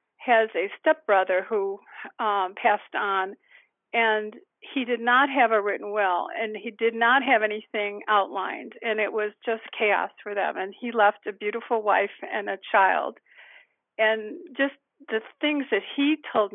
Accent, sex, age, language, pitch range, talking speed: American, female, 50-69, English, 205-260 Hz, 165 wpm